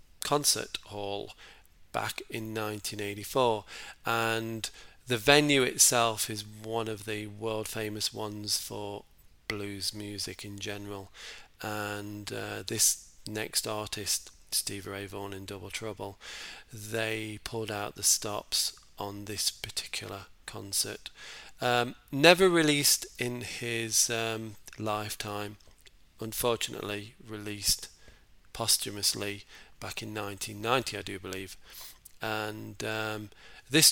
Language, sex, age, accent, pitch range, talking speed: English, male, 40-59, British, 100-115 Hz, 105 wpm